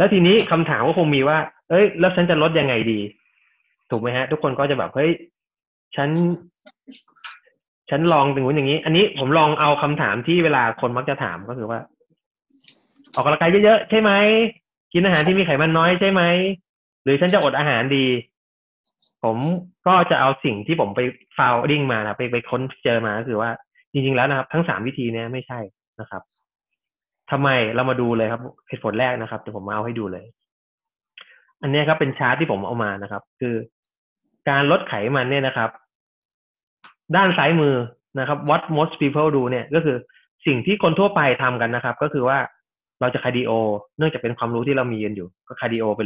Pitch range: 120-165 Hz